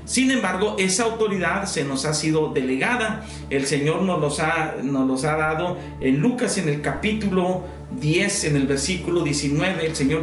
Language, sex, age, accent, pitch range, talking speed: Spanish, male, 50-69, Mexican, 150-205 Hz, 175 wpm